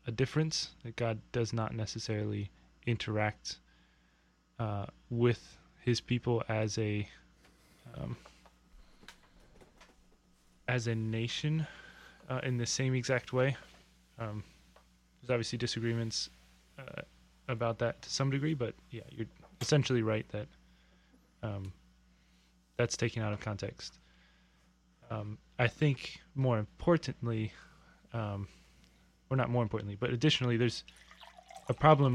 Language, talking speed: English, 115 wpm